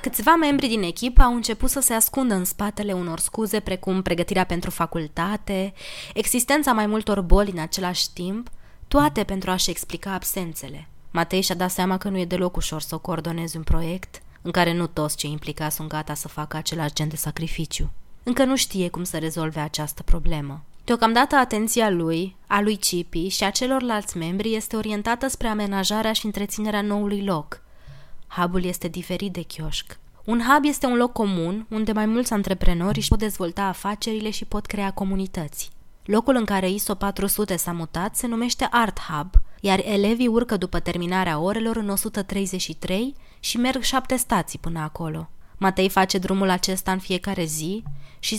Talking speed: 170 wpm